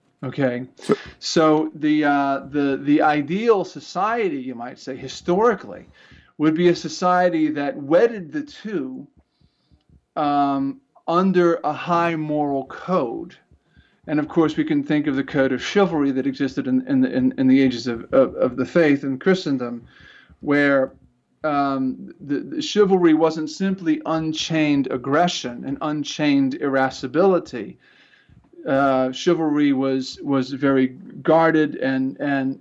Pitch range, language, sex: 135-170 Hz, English, male